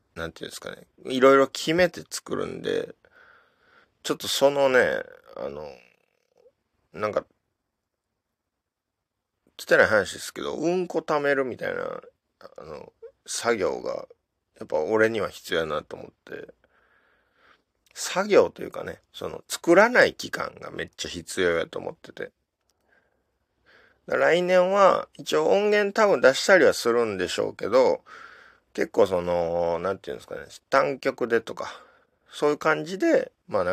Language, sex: Japanese, male